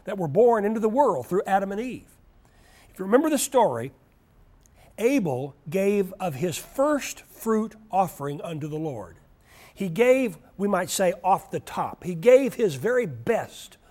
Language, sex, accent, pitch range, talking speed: English, male, American, 140-200 Hz, 165 wpm